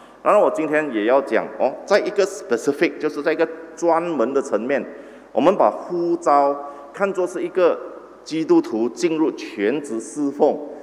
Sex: male